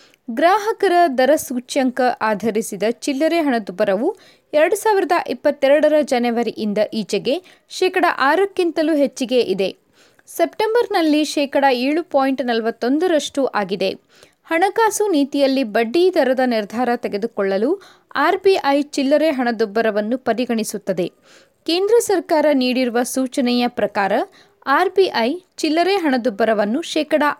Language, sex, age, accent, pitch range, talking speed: Kannada, female, 20-39, native, 230-320 Hz, 90 wpm